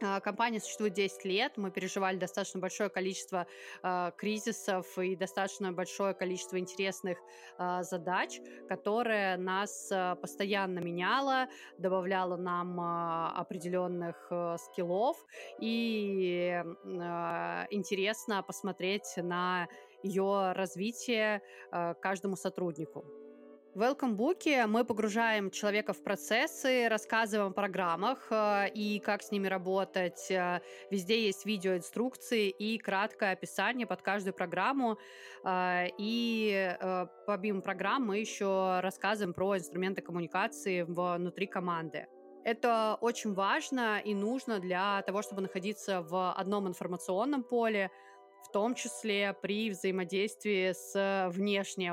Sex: female